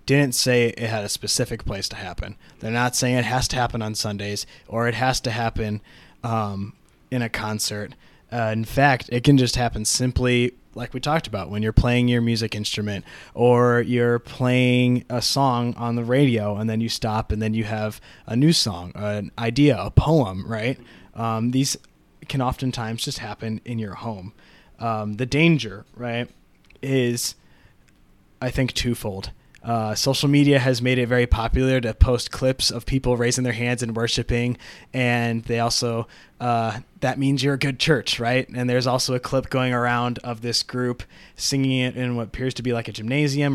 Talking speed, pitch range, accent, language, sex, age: 185 wpm, 115-130 Hz, American, English, male, 20-39